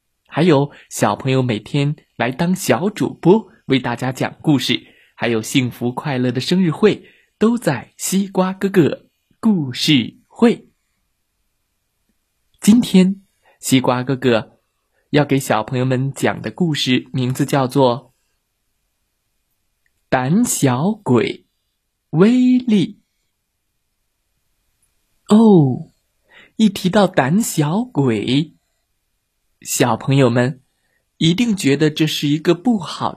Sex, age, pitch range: male, 20-39, 120-175 Hz